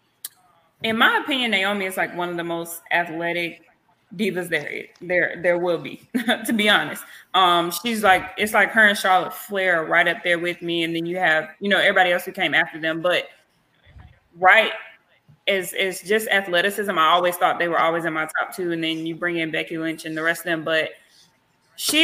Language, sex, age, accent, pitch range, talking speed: English, female, 20-39, American, 175-210 Hz, 210 wpm